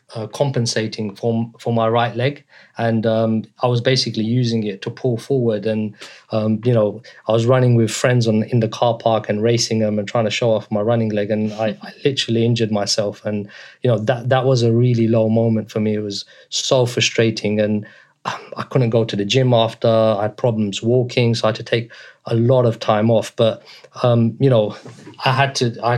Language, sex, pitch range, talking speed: English, male, 110-125 Hz, 215 wpm